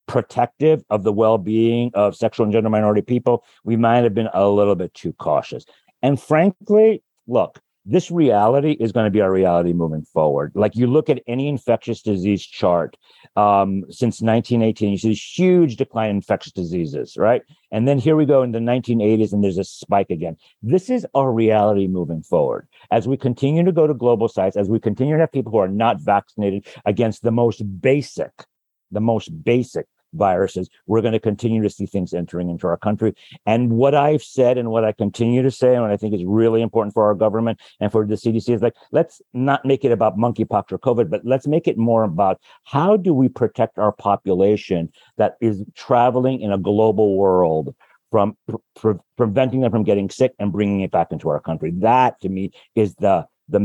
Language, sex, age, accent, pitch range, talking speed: English, male, 50-69, American, 100-125 Hz, 200 wpm